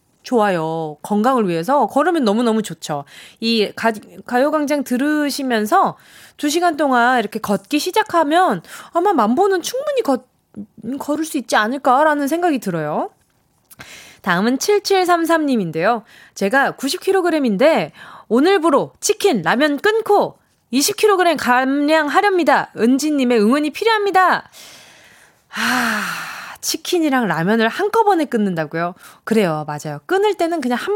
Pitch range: 215-325 Hz